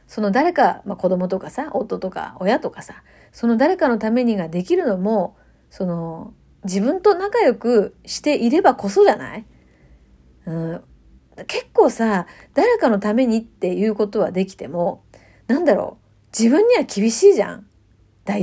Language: Japanese